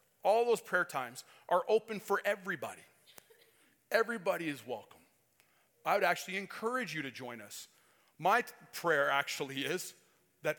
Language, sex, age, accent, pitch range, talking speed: English, male, 30-49, American, 150-195 Hz, 135 wpm